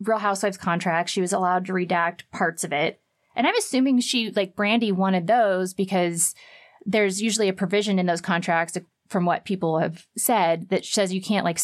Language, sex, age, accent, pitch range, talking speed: English, female, 20-39, American, 170-200 Hz, 190 wpm